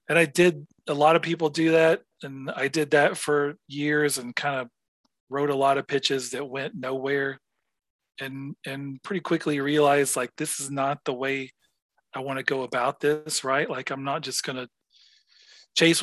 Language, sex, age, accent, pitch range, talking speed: English, male, 40-59, American, 130-150 Hz, 190 wpm